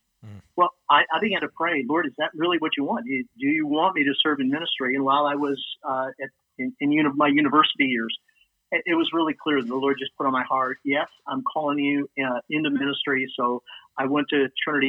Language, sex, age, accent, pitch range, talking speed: English, male, 50-69, American, 135-175 Hz, 240 wpm